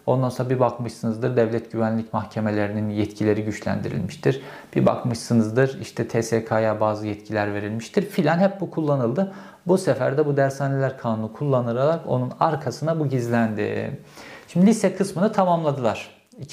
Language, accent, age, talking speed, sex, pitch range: Turkish, native, 50-69, 125 wpm, male, 115-150 Hz